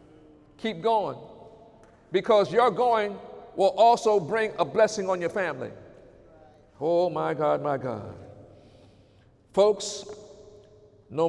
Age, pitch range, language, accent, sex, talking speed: 50-69, 170-225 Hz, English, American, male, 105 wpm